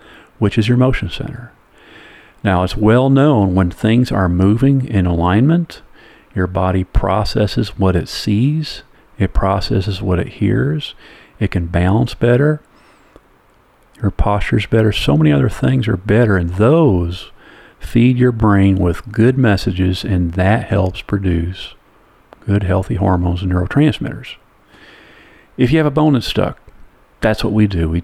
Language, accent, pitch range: English, American, 95-120 Hz